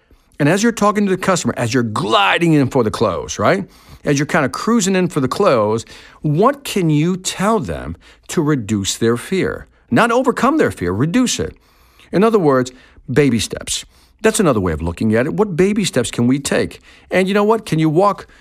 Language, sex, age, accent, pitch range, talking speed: English, male, 50-69, American, 125-195 Hz, 210 wpm